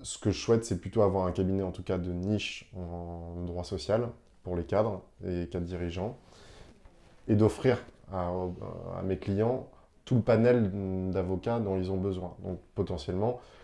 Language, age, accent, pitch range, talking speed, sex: French, 20-39, French, 90-105 Hz, 175 wpm, male